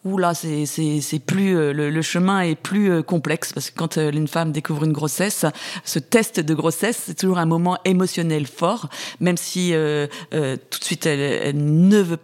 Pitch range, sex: 155-180 Hz, female